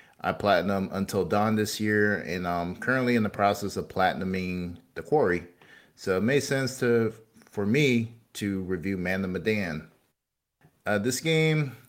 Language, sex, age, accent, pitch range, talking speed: English, male, 30-49, American, 95-120 Hz, 150 wpm